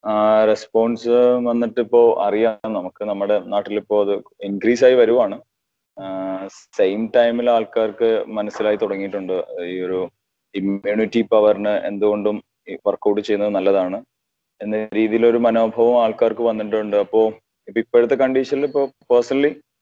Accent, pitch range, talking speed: native, 105-130 Hz, 100 wpm